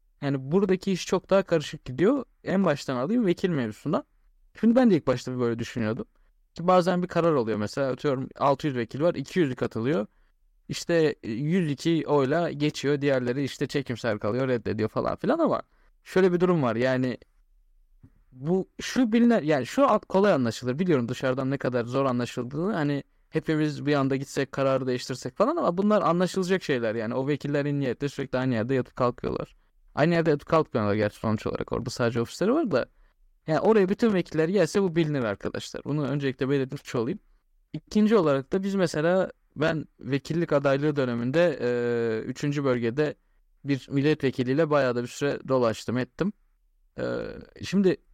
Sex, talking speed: male, 160 wpm